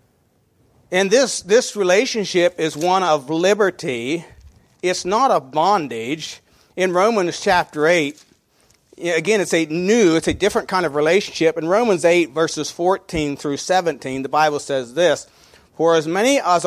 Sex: male